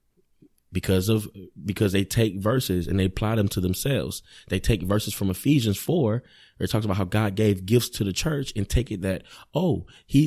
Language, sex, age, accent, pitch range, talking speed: English, male, 20-39, American, 100-140 Hz, 205 wpm